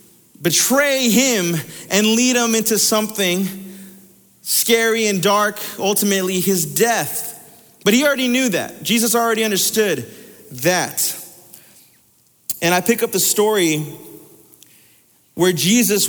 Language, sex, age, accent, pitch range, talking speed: English, male, 30-49, American, 185-220 Hz, 110 wpm